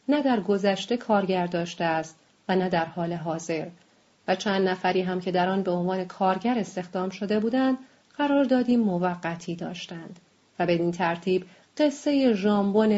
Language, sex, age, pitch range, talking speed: English, female, 30-49, 185-220 Hz, 155 wpm